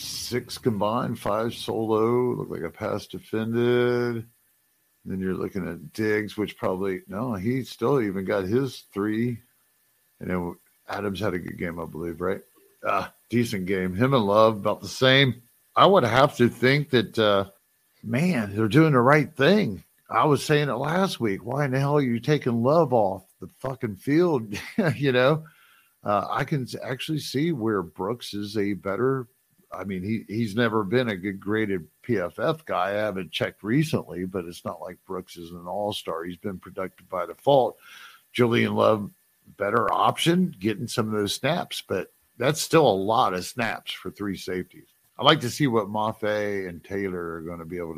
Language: English